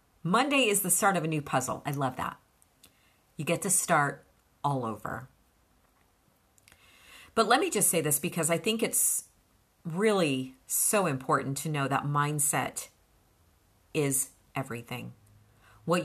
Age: 40-59